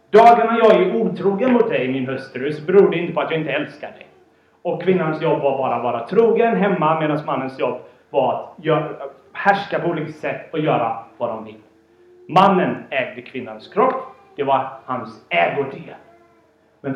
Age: 30-49